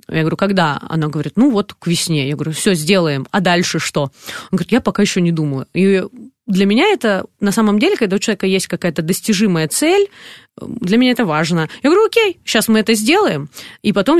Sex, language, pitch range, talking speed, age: female, Russian, 170-210 Hz, 210 wpm, 20-39